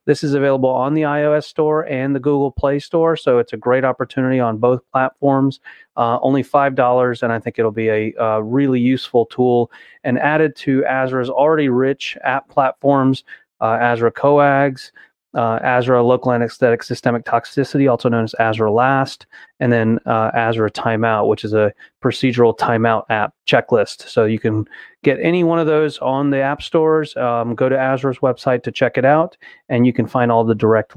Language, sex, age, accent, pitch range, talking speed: English, male, 30-49, American, 120-140 Hz, 180 wpm